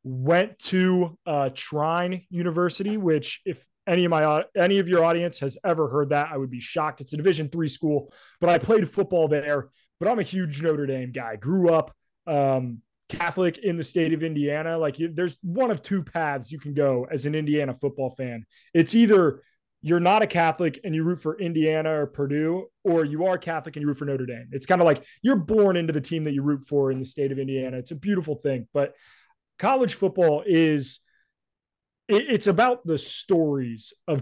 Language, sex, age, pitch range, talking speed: English, male, 20-39, 145-185 Hz, 205 wpm